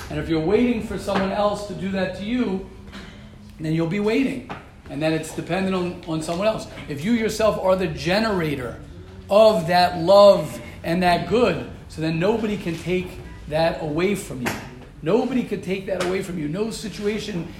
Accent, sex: American, male